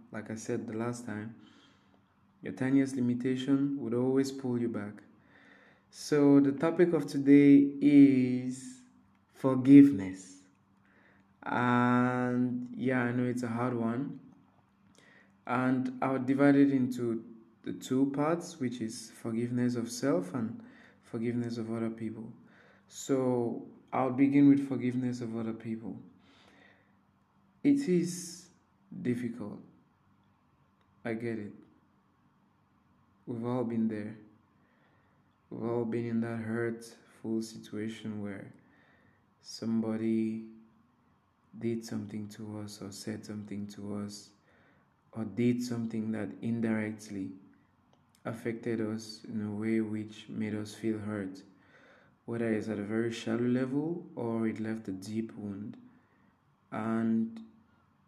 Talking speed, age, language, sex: 115 wpm, 20-39, English, male